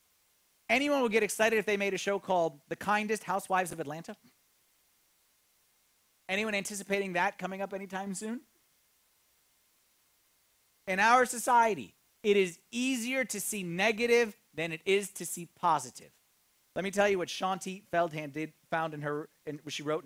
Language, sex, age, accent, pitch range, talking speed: English, male, 30-49, American, 175-235 Hz, 155 wpm